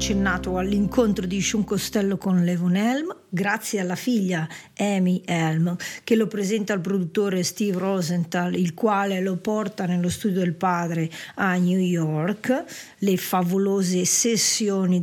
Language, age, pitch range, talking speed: English, 50-69, 175-215 Hz, 130 wpm